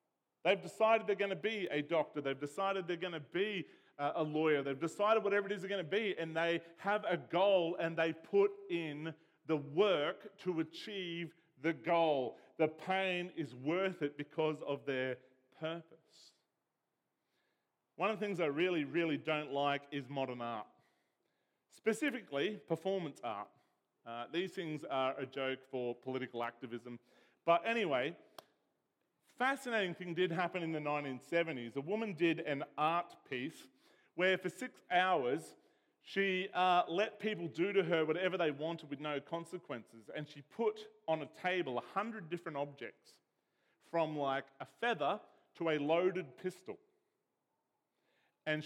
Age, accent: 40-59, Australian